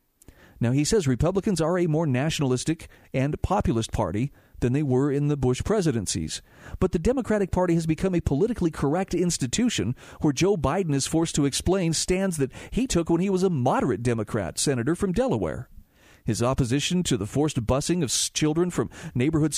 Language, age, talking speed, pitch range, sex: English, 50-69, 180 wpm, 125-175 Hz, male